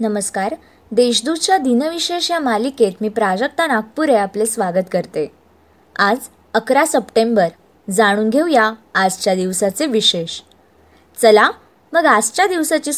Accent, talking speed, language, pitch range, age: native, 105 wpm, Marathi, 205-280 Hz, 20-39